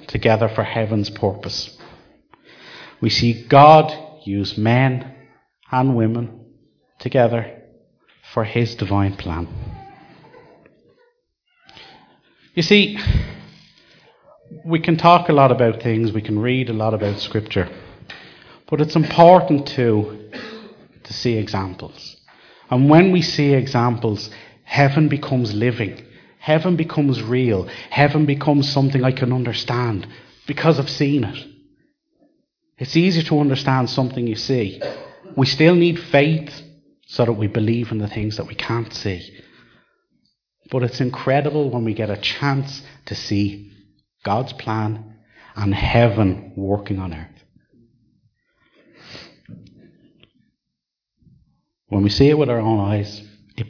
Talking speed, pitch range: 120 wpm, 110-145 Hz